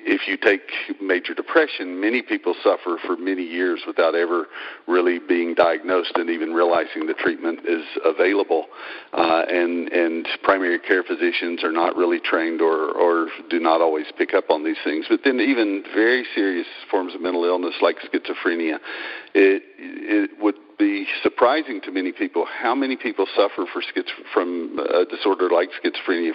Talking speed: 165 wpm